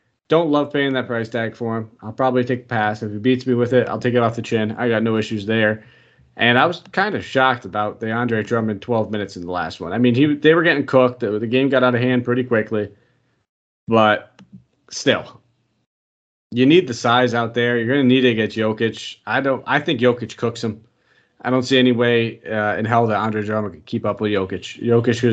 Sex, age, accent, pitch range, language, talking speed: male, 30-49, American, 110-130 Hz, English, 240 wpm